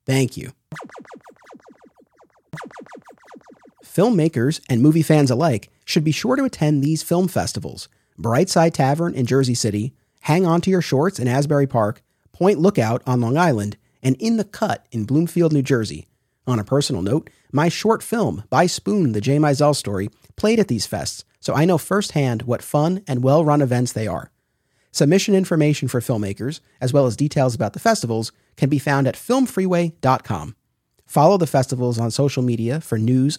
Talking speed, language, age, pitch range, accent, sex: 165 wpm, English, 30-49, 125-170 Hz, American, male